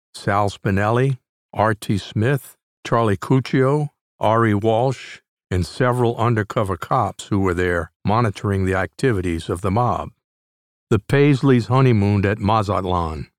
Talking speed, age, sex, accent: 115 wpm, 60-79, male, American